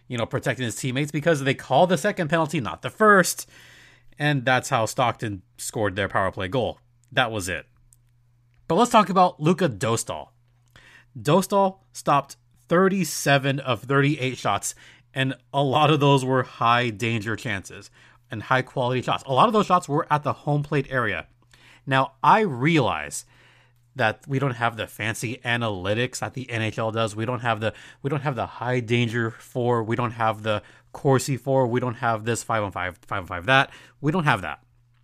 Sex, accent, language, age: male, American, English, 30-49